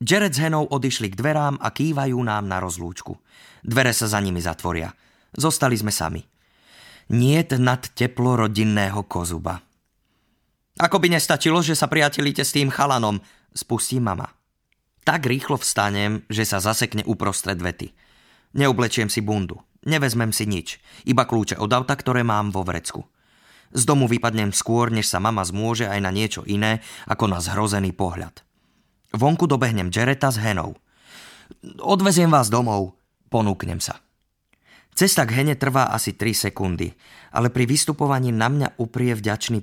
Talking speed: 145 wpm